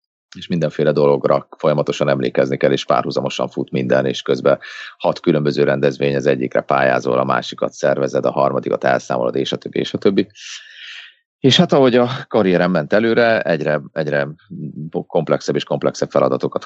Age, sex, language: 30-49, male, Hungarian